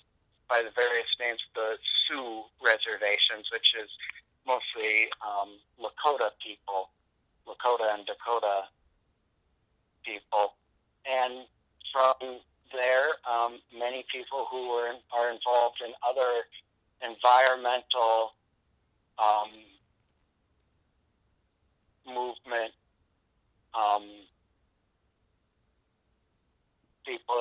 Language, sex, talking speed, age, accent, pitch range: English, male, 75 wpm, 50-69, American, 100-120 Hz